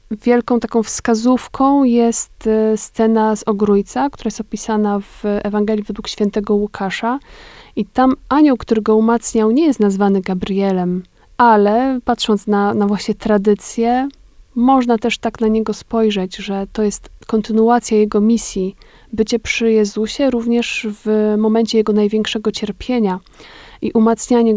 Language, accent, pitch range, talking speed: Polish, native, 210-235 Hz, 130 wpm